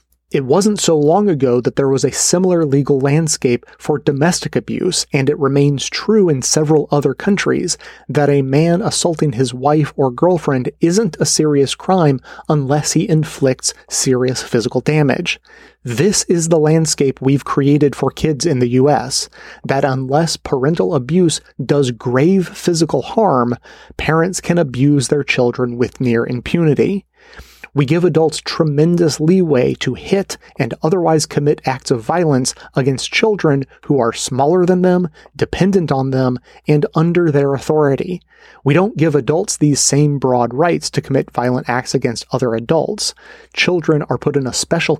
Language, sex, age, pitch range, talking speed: English, male, 30-49, 135-170 Hz, 155 wpm